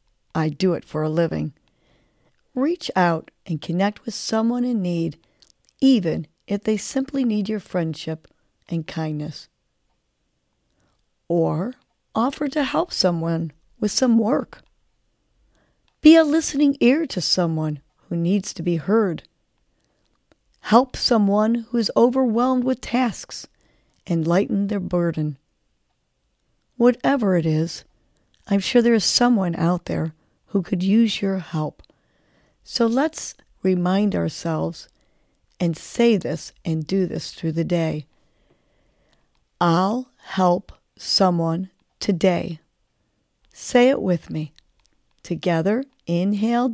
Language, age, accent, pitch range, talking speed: English, 40-59, American, 170-235 Hz, 115 wpm